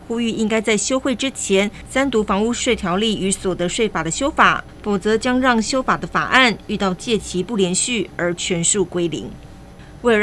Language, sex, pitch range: Chinese, female, 185-225 Hz